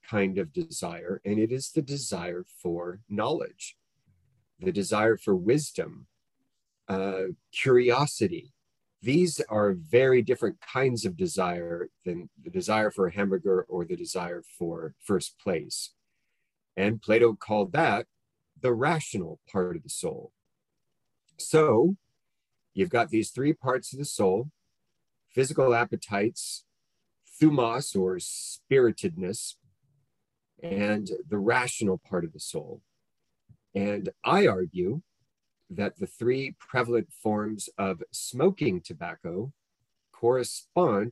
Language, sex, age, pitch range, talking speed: English, male, 40-59, 100-135 Hz, 115 wpm